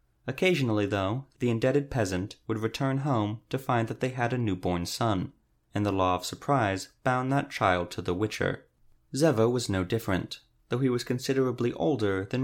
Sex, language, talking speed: male, English, 180 wpm